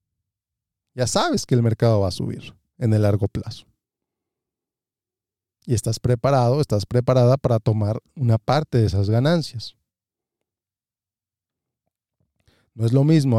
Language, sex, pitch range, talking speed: Spanish, male, 115-140 Hz, 125 wpm